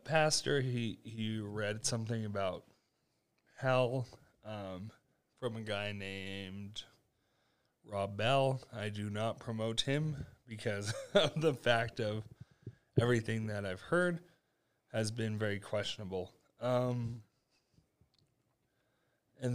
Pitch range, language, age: 110-130 Hz, English, 30-49